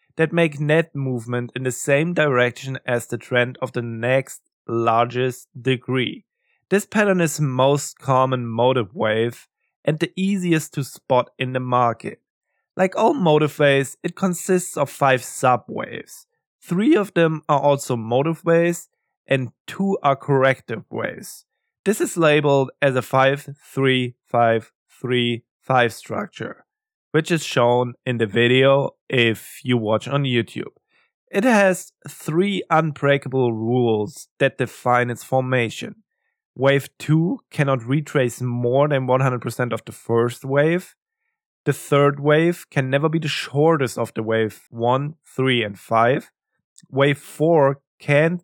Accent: German